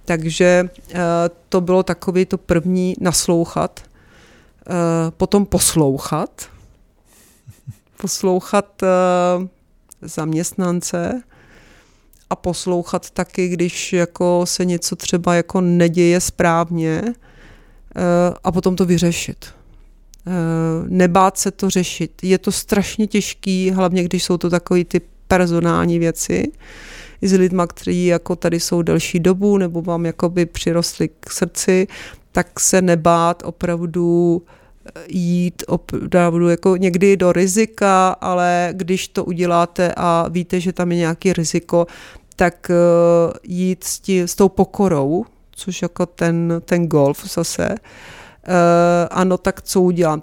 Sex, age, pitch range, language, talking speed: female, 40-59, 170-185 Hz, Czech, 110 wpm